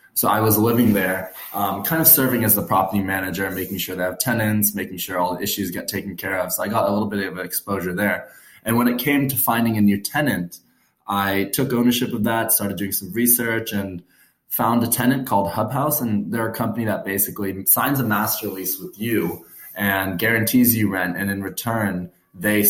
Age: 20-39